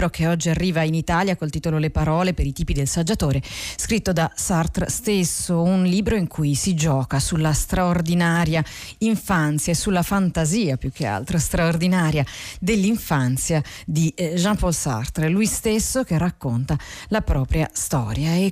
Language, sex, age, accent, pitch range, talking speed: Italian, female, 40-59, native, 155-200 Hz, 150 wpm